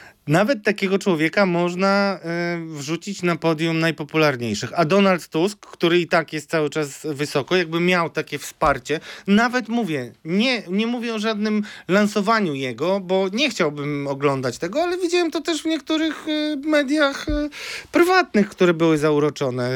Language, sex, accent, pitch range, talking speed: Polish, male, native, 145-205 Hz, 145 wpm